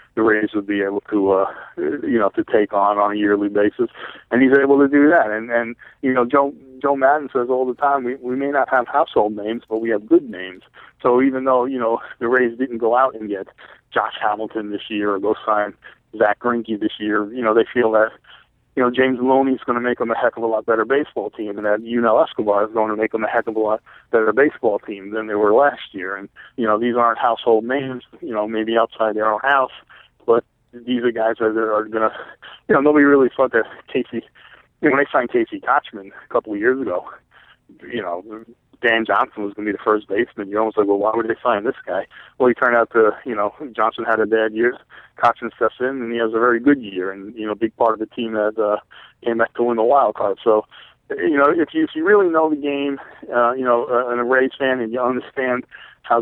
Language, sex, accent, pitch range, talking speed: English, male, American, 105-130 Hz, 250 wpm